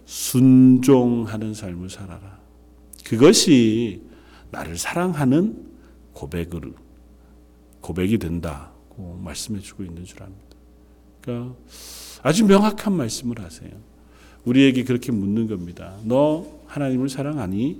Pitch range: 85-135 Hz